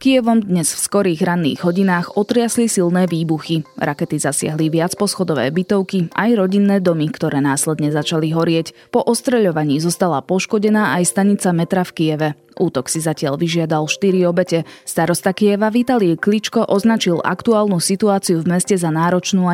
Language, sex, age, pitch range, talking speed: Slovak, female, 20-39, 165-200 Hz, 145 wpm